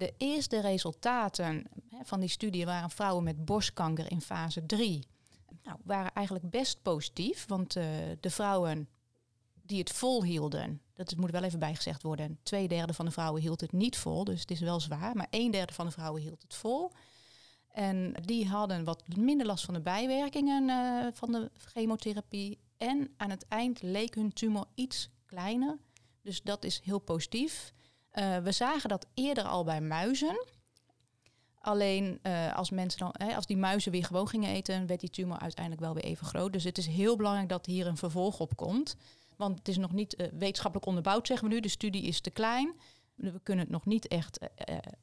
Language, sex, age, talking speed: Dutch, female, 30-49, 190 wpm